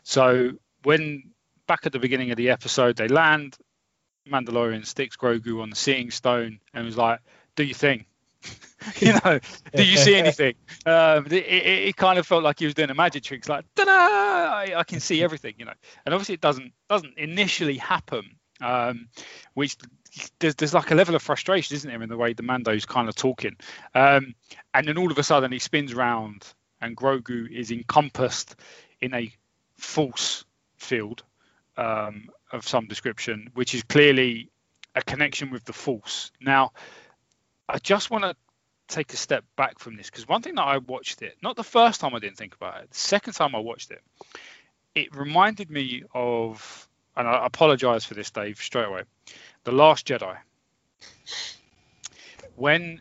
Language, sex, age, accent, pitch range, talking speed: English, male, 20-39, British, 120-160 Hz, 180 wpm